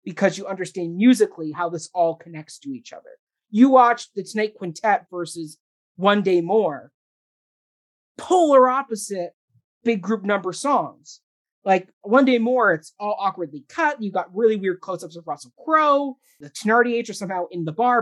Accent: American